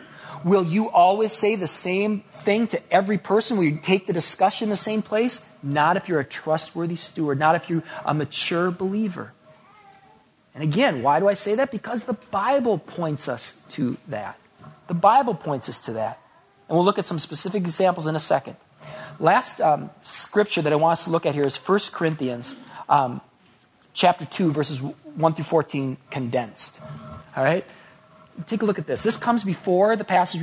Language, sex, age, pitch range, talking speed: English, male, 40-59, 155-220 Hz, 185 wpm